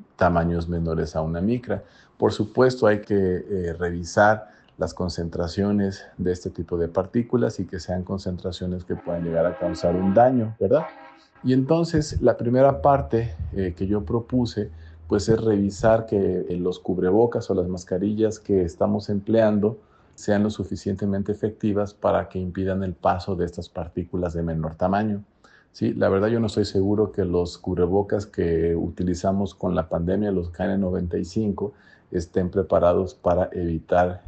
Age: 40-59